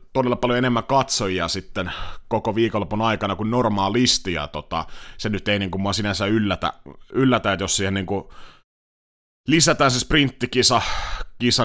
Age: 30-49